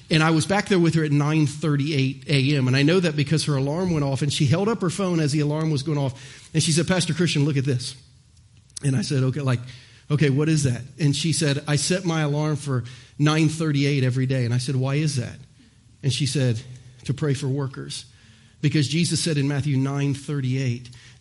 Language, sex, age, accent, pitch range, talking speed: English, male, 40-59, American, 130-175 Hz, 220 wpm